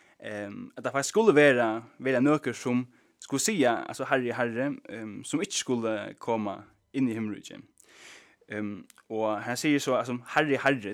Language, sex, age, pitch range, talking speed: English, male, 20-39, 115-140 Hz, 160 wpm